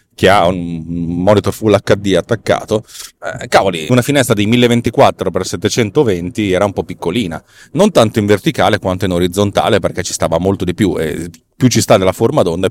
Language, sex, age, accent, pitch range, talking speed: Italian, male, 30-49, native, 100-130 Hz, 175 wpm